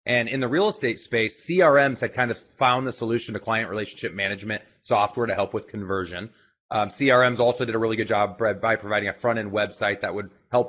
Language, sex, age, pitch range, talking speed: English, male, 30-49, 105-125 Hz, 220 wpm